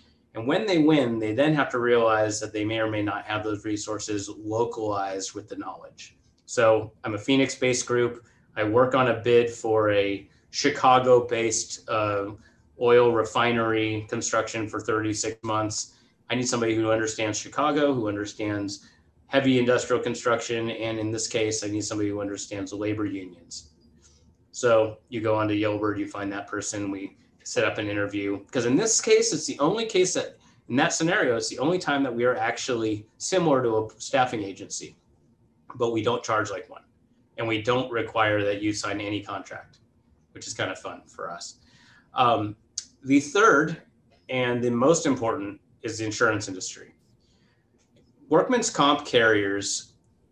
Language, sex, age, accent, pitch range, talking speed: English, male, 30-49, American, 105-120 Hz, 170 wpm